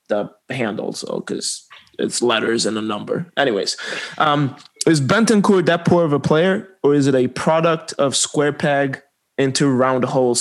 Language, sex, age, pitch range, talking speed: English, male, 20-39, 135-160 Hz, 165 wpm